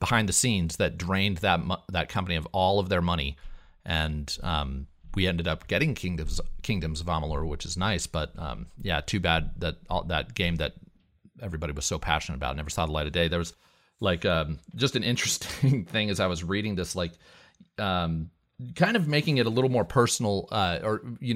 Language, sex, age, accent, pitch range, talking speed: English, male, 30-49, American, 85-110 Hz, 205 wpm